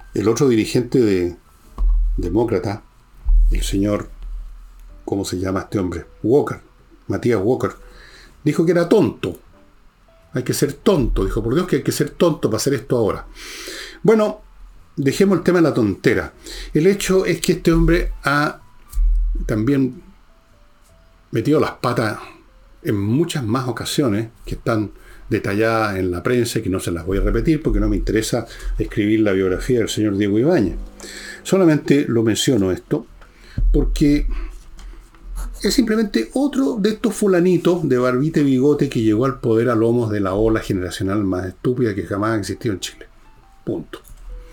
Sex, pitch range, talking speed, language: male, 100-155 Hz, 155 wpm, Spanish